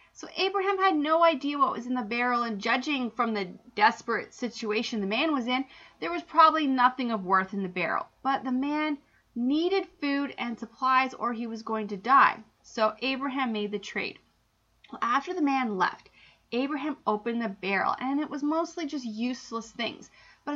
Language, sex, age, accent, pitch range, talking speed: English, female, 30-49, American, 215-295 Hz, 185 wpm